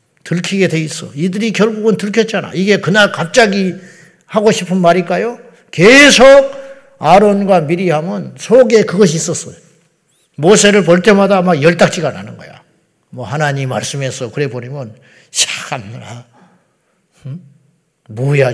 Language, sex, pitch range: Korean, male, 135-180 Hz